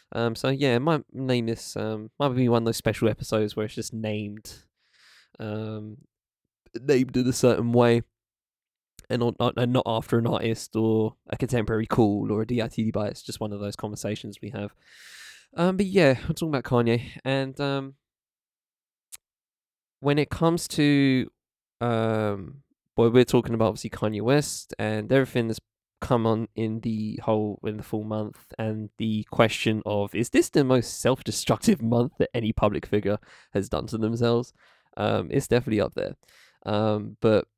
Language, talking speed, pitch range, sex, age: English, 170 wpm, 110-130 Hz, male, 20-39